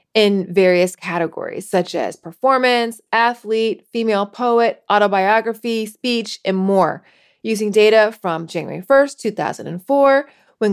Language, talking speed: English, 110 wpm